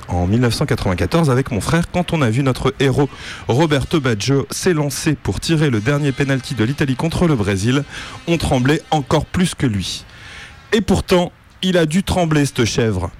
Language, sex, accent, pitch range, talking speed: French, male, French, 110-165 Hz, 175 wpm